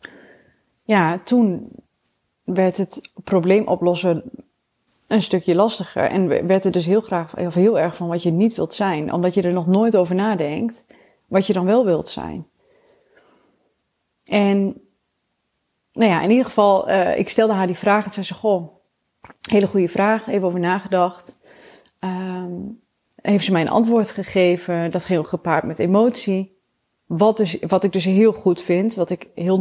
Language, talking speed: Dutch, 160 wpm